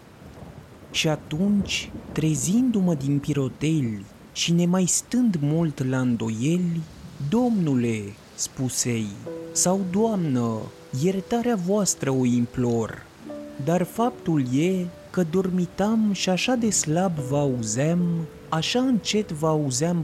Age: 30-49